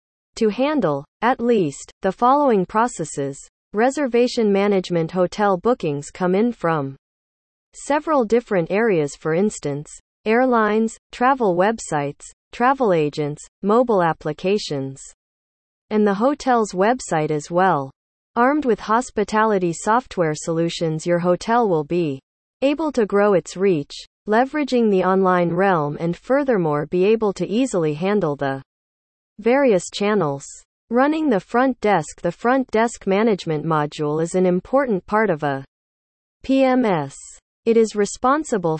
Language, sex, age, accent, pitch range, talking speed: English, female, 40-59, American, 160-235 Hz, 120 wpm